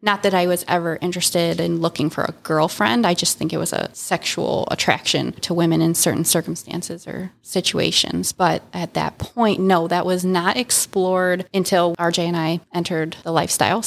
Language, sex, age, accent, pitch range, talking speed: English, female, 20-39, American, 165-185 Hz, 180 wpm